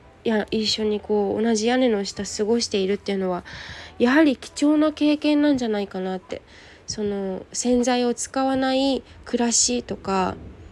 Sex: female